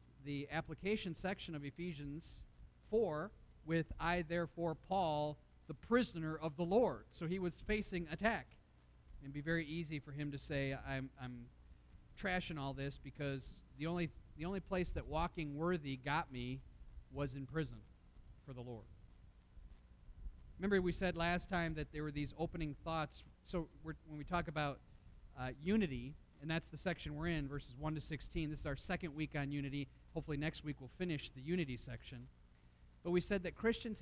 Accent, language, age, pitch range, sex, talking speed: American, English, 40-59, 135-170 Hz, male, 175 wpm